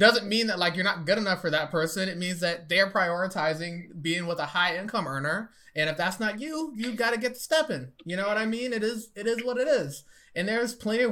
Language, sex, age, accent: English, male, 20-39, American